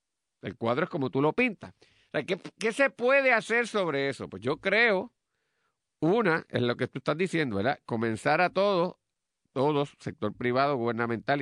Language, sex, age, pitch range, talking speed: Spanish, male, 50-69, 115-175 Hz, 170 wpm